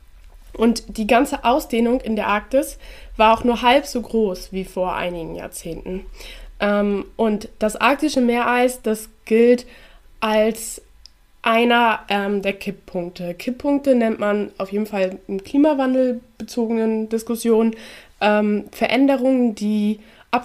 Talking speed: 115 wpm